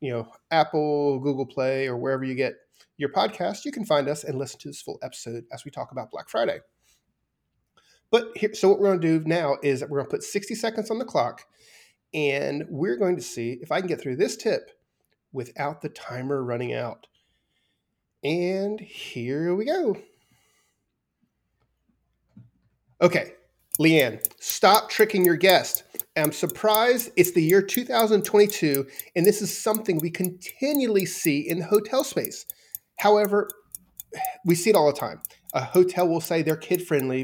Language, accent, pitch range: English, American, 140-205 Hz